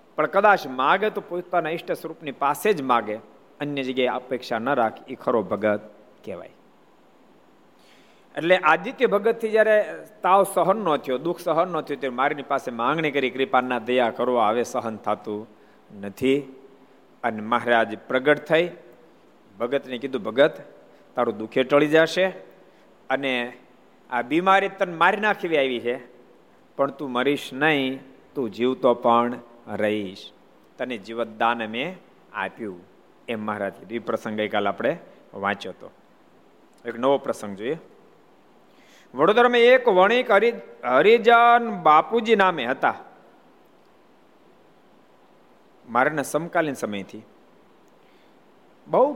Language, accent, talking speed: Gujarati, native, 80 wpm